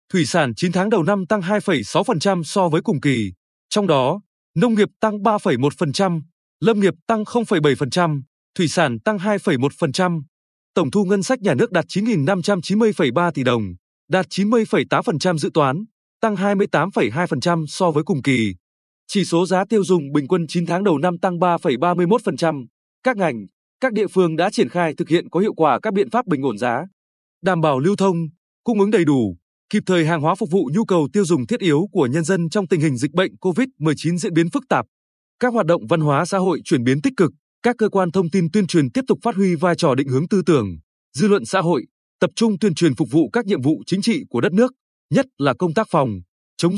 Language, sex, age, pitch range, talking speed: Vietnamese, male, 20-39, 160-205 Hz, 210 wpm